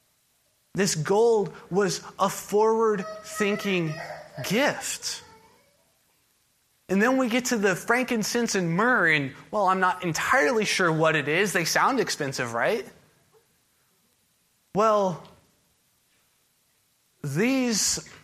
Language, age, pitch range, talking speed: English, 20-39, 170-215 Hz, 100 wpm